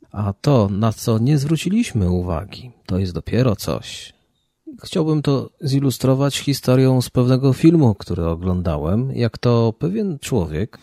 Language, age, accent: Polish, 40-59, native